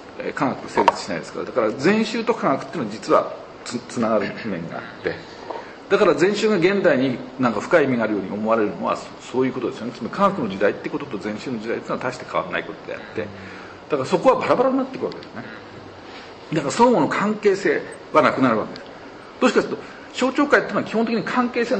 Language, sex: Japanese, male